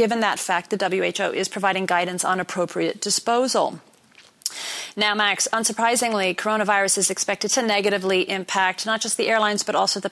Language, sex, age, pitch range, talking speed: English, female, 30-49, 195-245 Hz, 160 wpm